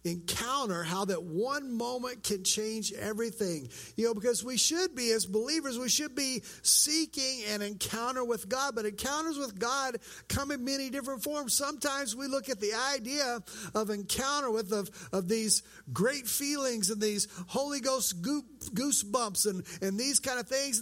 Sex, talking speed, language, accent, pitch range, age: male, 165 wpm, English, American, 190-255 Hz, 50-69